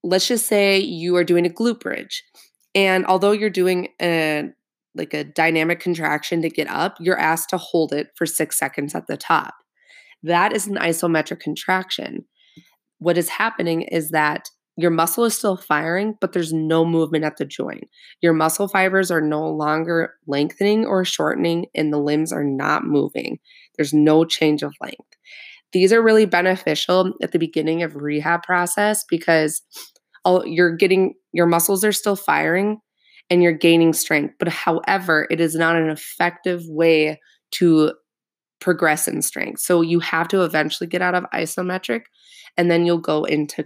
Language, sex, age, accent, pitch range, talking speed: English, female, 20-39, American, 155-185 Hz, 165 wpm